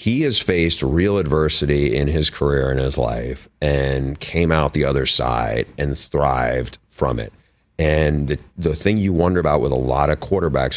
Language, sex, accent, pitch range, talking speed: English, male, American, 65-85 Hz, 185 wpm